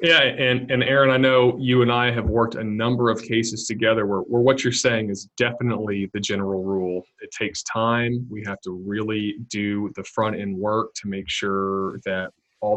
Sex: male